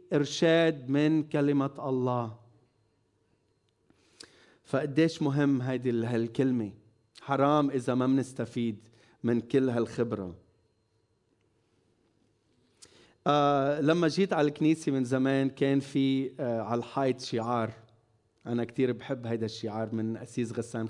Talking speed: 100 wpm